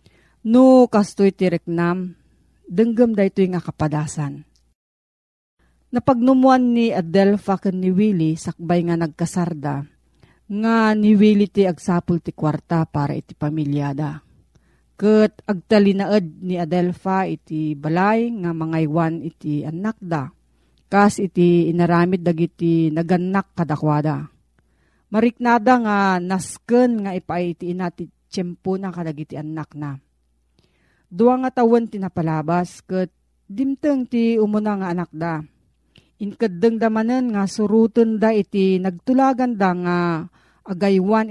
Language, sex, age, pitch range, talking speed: Filipino, female, 40-59, 160-215 Hz, 110 wpm